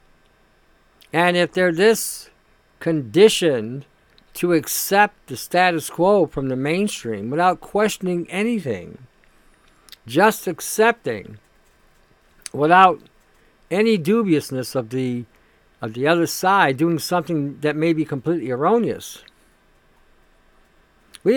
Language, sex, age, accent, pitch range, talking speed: English, male, 60-79, American, 145-180 Hz, 100 wpm